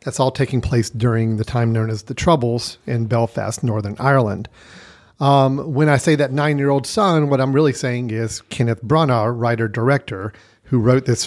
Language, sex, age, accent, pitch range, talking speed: English, male, 40-59, American, 115-145 Hz, 190 wpm